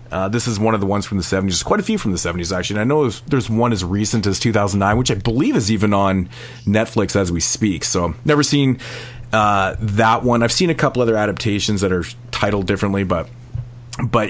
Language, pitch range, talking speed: English, 100-120 Hz, 230 wpm